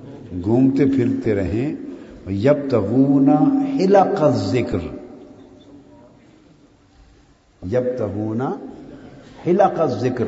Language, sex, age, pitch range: Urdu, male, 60-79, 115-140 Hz